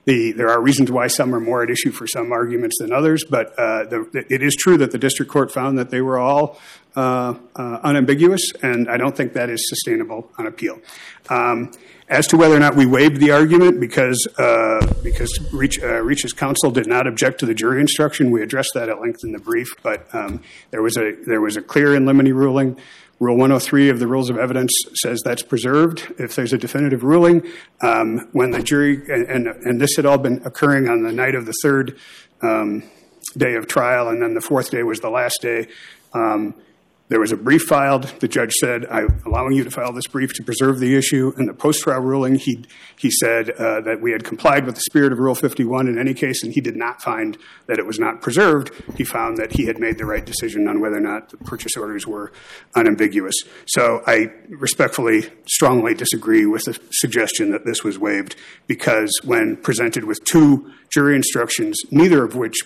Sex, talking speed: male, 215 wpm